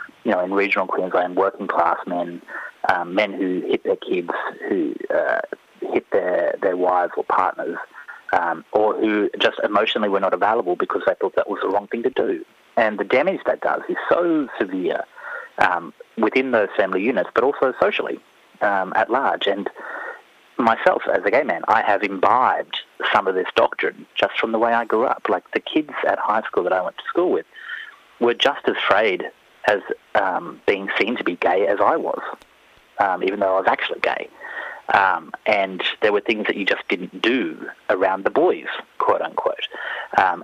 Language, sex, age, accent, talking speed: English, male, 30-49, Australian, 190 wpm